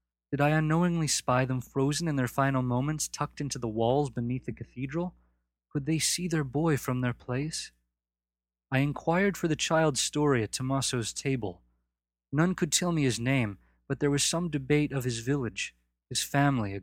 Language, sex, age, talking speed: English, male, 20-39, 180 wpm